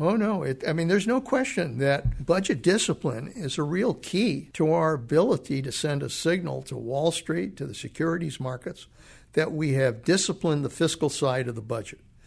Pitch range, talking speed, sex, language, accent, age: 130-160 Hz, 185 wpm, male, English, American, 60-79